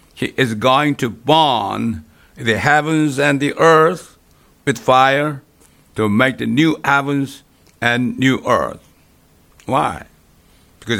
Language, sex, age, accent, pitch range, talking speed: English, male, 60-79, American, 100-150 Hz, 120 wpm